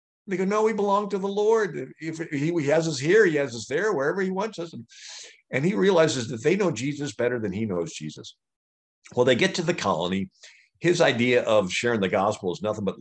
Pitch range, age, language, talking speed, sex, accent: 95-145 Hz, 50-69, English, 230 wpm, male, American